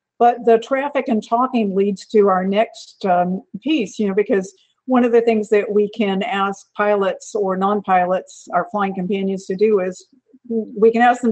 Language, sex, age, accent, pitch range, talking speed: English, female, 50-69, American, 195-230 Hz, 185 wpm